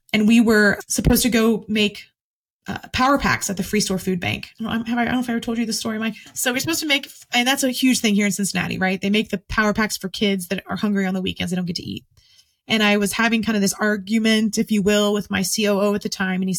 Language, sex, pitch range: English, female, 200-245 Hz